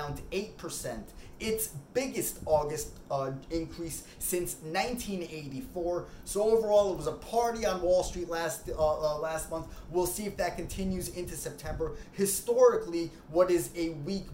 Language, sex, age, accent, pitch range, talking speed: English, male, 20-39, American, 155-225 Hz, 145 wpm